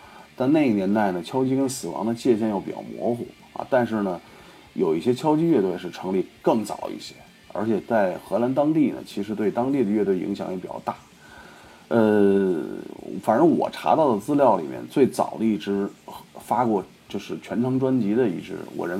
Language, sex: Chinese, male